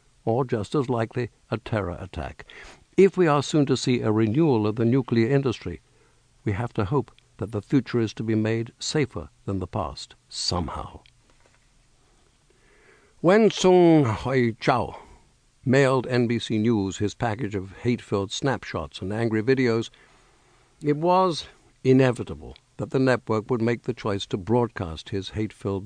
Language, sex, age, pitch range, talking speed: English, male, 60-79, 115-135 Hz, 150 wpm